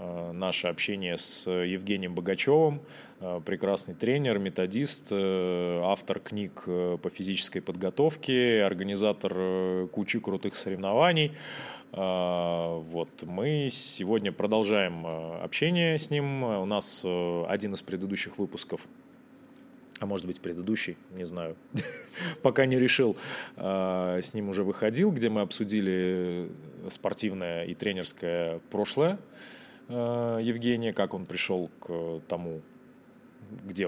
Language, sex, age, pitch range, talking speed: Russian, male, 20-39, 90-115 Hz, 100 wpm